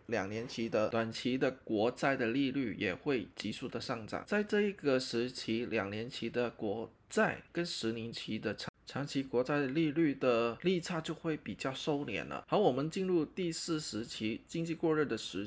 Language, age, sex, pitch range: Chinese, 20-39, male, 115-165 Hz